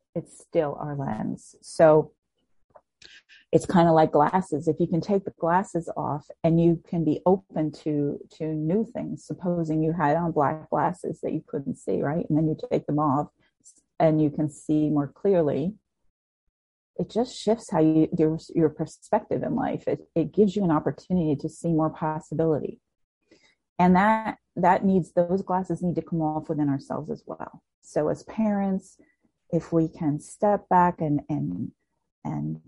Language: English